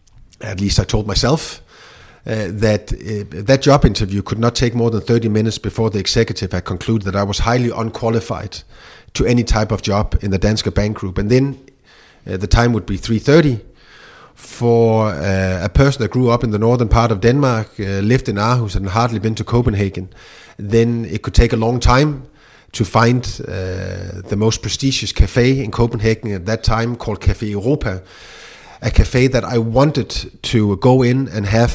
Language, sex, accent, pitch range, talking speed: English, male, Danish, 100-120 Hz, 190 wpm